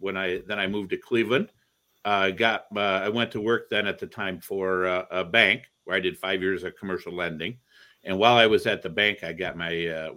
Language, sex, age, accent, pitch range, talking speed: English, male, 50-69, American, 85-100 Hz, 250 wpm